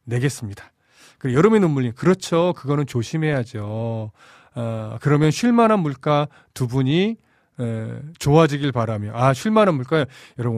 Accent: native